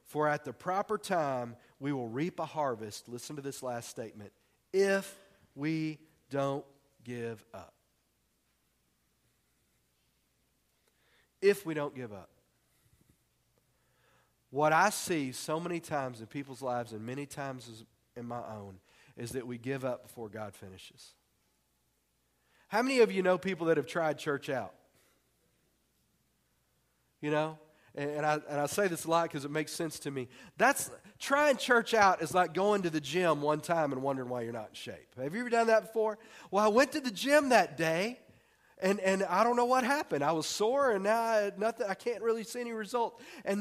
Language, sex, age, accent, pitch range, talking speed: English, male, 40-59, American, 130-205 Hz, 180 wpm